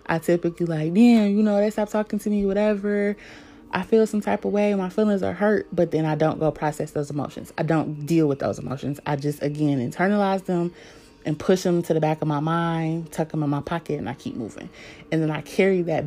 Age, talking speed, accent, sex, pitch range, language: 20-39, 240 wpm, American, female, 150-180 Hz, English